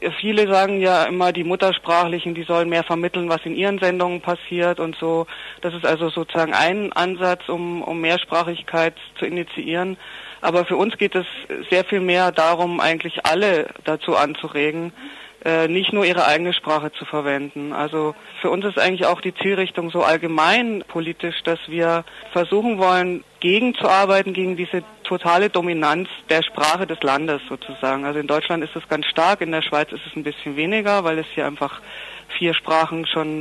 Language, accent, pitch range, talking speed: German, German, 165-190 Hz, 170 wpm